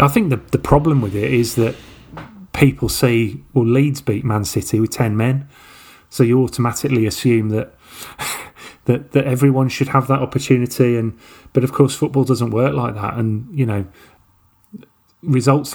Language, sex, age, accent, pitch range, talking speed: English, male, 30-49, British, 110-130 Hz, 170 wpm